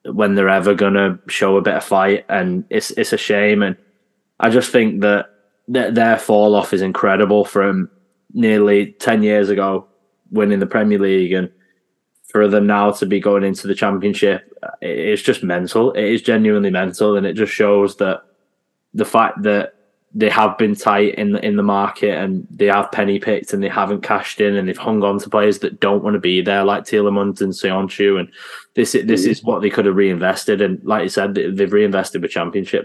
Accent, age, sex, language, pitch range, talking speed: British, 10-29, male, English, 100-105 Hz, 200 wpm